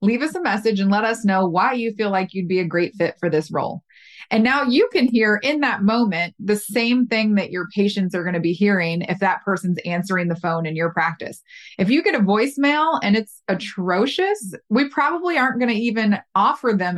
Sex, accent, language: female, American, English